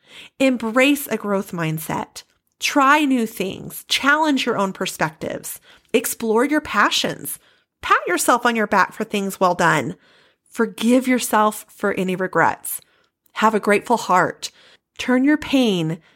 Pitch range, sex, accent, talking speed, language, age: 200-285 Hz, female, American, 130 wpm, English, 30-49